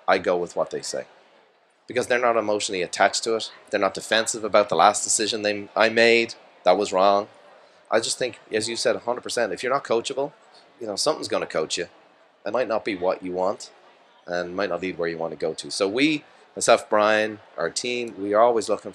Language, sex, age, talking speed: English, male, 30-49, 225 wpm